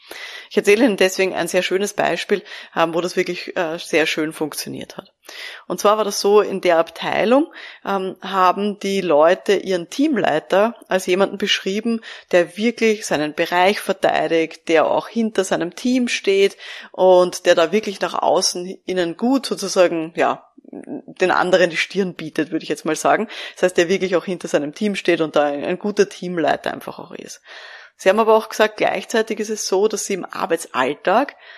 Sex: female